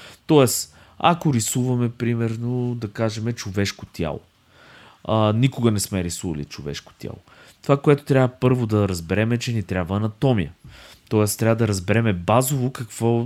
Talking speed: 145 wpm